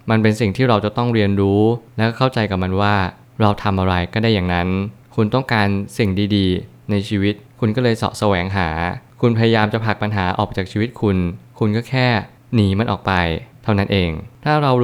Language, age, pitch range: Thai, 20-39, 100-120 Hz